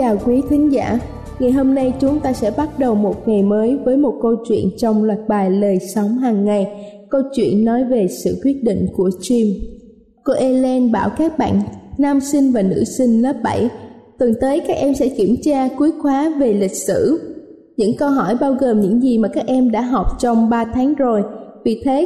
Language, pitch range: Vietnamese, 220-275 Hz